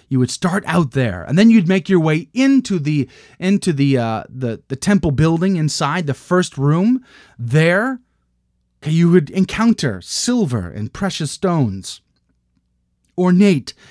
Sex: male